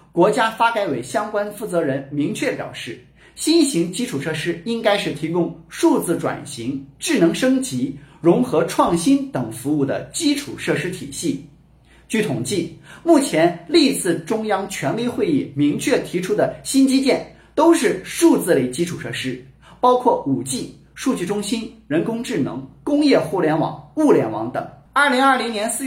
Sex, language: male, Chinese